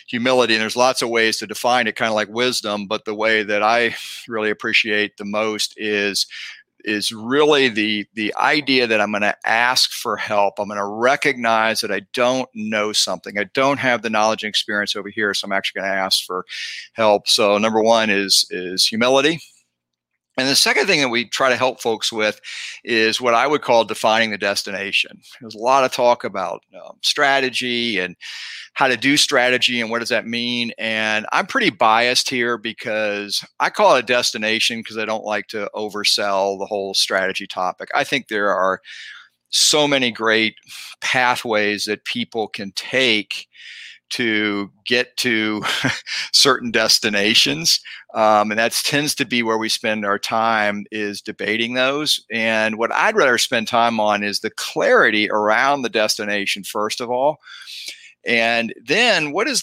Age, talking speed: 50-69, 175 wpm